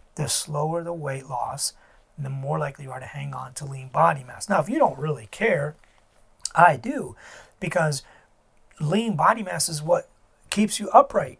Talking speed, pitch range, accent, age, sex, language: 180 wpm, 145-190 Hz, American, 30-49, male, English